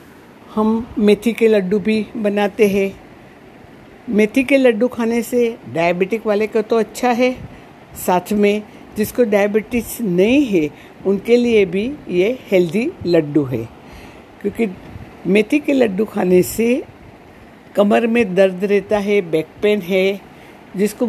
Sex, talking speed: female, 130 wpm